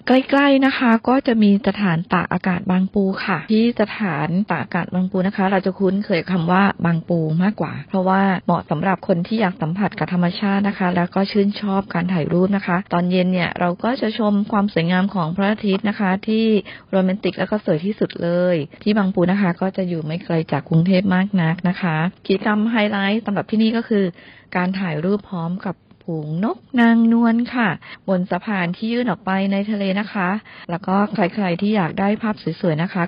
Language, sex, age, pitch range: Thai, female, 20-39, 180-205 Hz